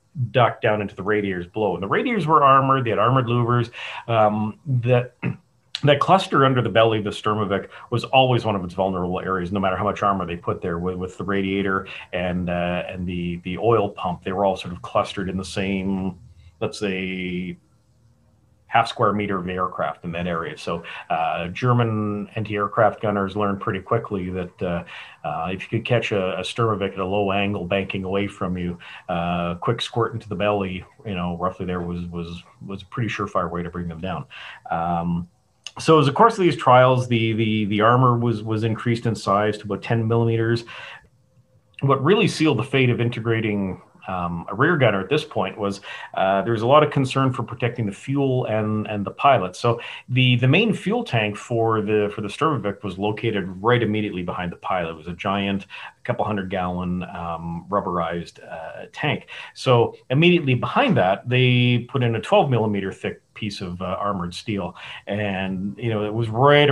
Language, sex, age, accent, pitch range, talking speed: English, male, 40-59, American, 95-120 Hz, 195 wpm